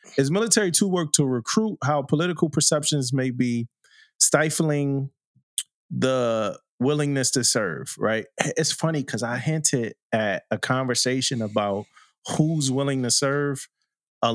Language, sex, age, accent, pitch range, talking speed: English, male, 30-49, American, 120-150 Hz, 130 wpm